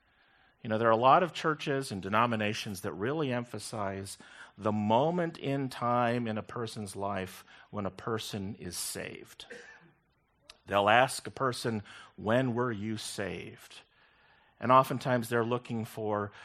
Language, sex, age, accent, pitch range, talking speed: English, male, 50-69, American, 105-135 Hz, 140 wpm